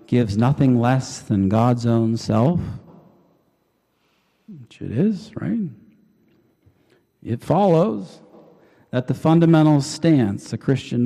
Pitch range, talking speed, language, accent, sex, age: 105-130 Hz, 105 wpm, English, American, male, 50-69